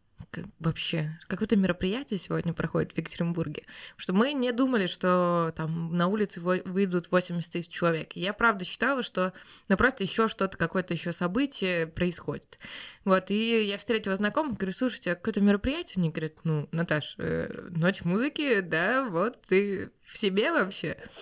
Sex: female